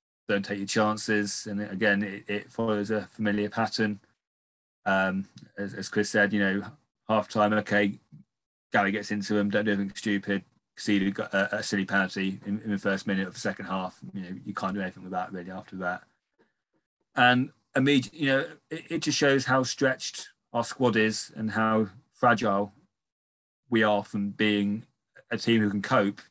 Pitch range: 100-110 Hz